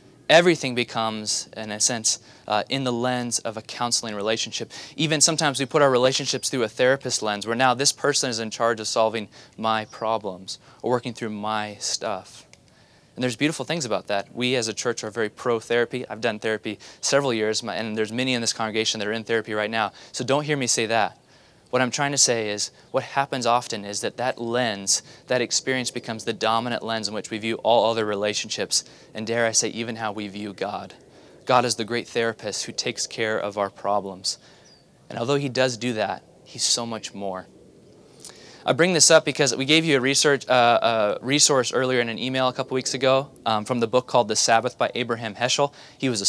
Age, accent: 20-39, American